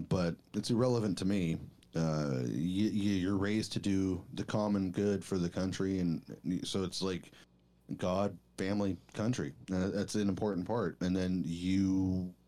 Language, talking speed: English, 160 wpm